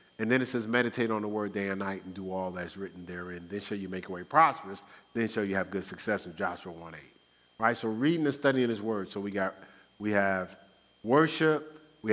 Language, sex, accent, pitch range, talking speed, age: English, male, American, 100-130 Hz, 235 wpm, 50-69